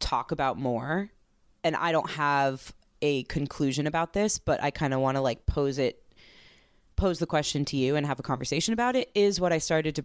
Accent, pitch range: American, 135-175 Hz